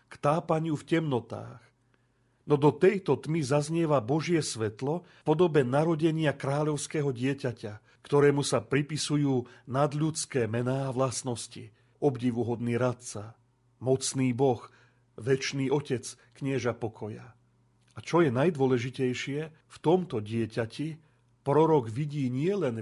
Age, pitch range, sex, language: 40-59, 120-150 Hz, male, Slovak